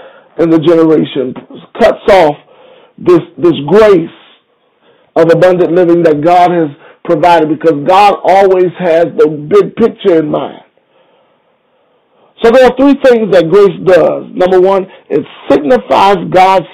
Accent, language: American, English